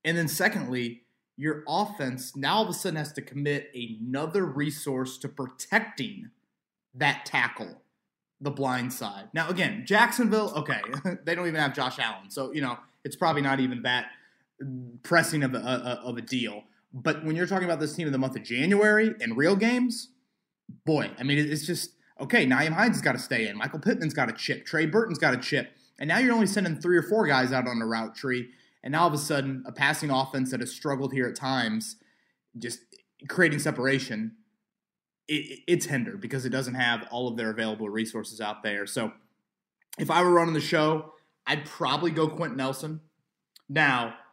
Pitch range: 130-175 Hz